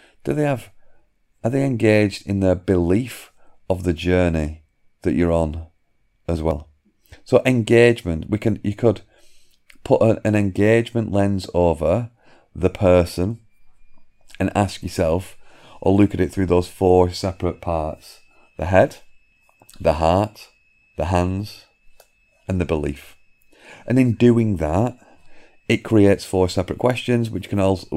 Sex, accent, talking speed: male, British, 135 wpm